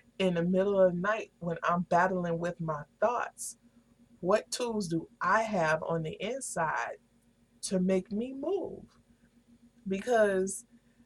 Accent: American